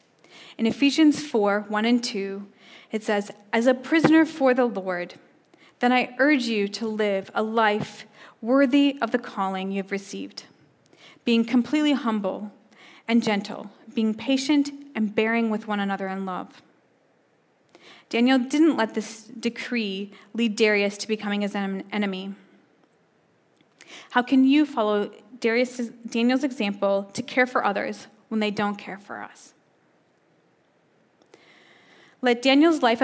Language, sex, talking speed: English, female, 135 wpm